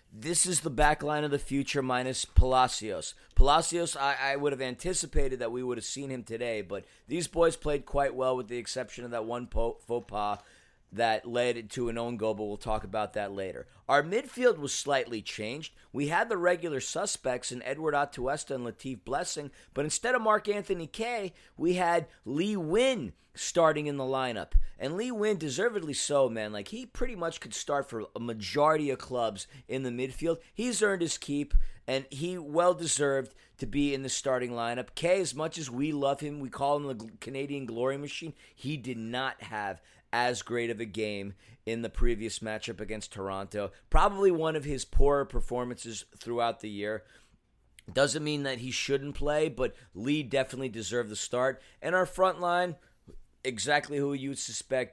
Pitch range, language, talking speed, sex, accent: 120-155 Hz, English, 185 wpm, male, American